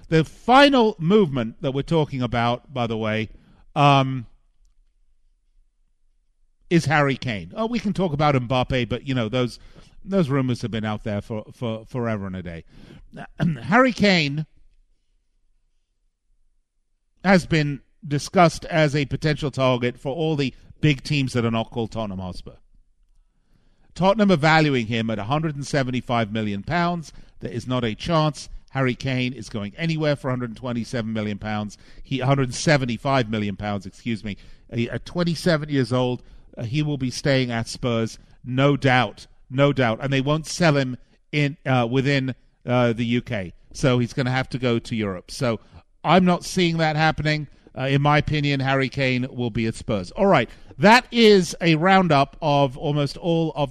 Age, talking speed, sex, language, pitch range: 50-69, 175 wpm, male, English, 115-150 Hz